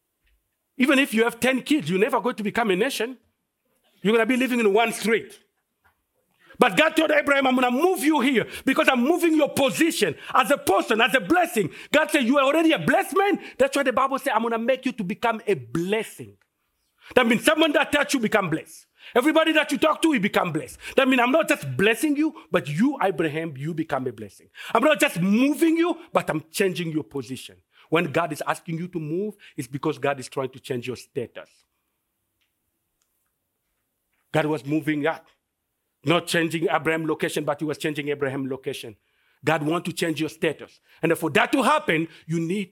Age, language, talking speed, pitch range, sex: 50-69, English, 205 wpm, 160-260 Hz, male